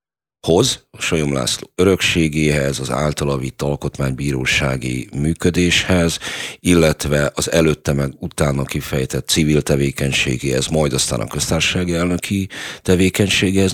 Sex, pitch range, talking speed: male, 70-80 Hz, 100 wpm